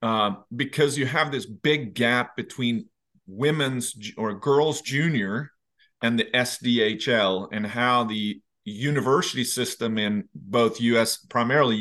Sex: male